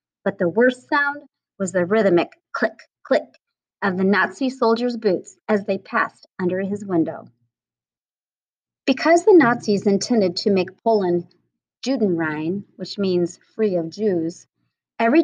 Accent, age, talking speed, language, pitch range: American, 30-49, 135 wpm, English, 180-245 Hz